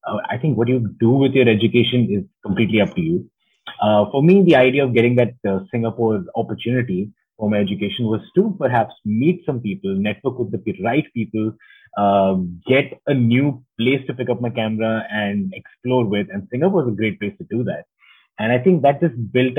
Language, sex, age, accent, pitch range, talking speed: English, male, 30-49, Indian, 100-140 Hz, 200 wpm